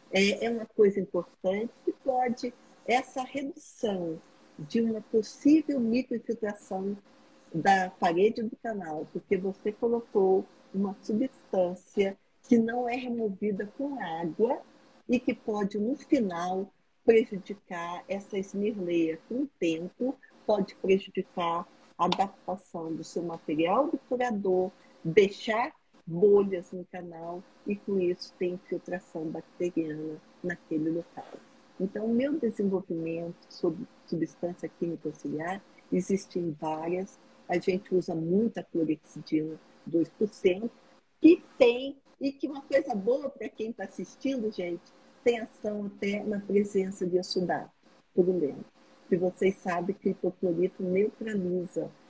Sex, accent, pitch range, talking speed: female, Brazilian, 175-230 Hz, 115 wpm